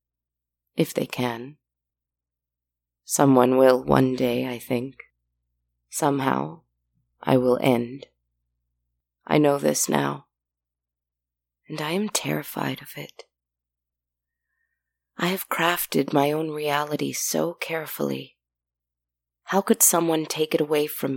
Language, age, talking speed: English, 30-49, 110 wpm